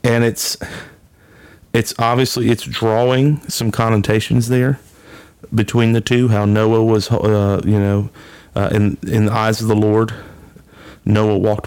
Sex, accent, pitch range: male, American, 100-115 Hz